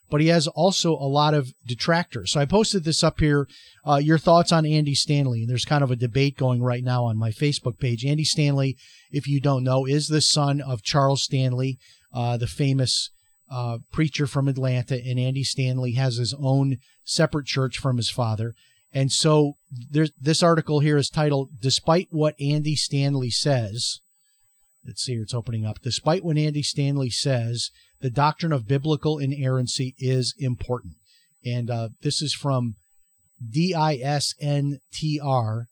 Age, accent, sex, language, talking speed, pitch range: 40-59, American, male, English, 170 wpm, 125-155 Hz